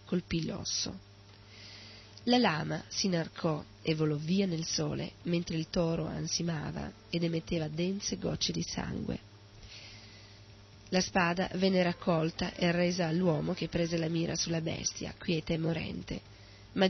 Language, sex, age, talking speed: Italian, female, 30-49, 135 wpm